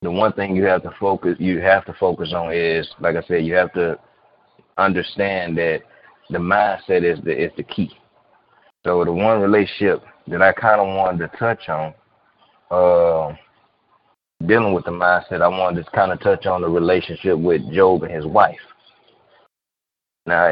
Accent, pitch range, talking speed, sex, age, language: American, 85-95 Hz, 175 wpm, male, 20-39, English